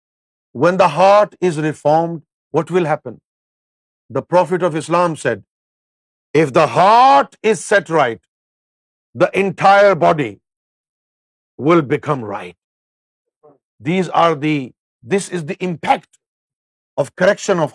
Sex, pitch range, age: male, 120-185 Hz, 50-69